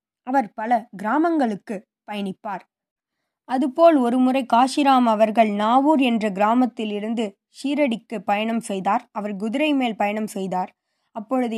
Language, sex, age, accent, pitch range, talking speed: Tamil, female, 20-39, native, 210-255 Hz, 110 wpm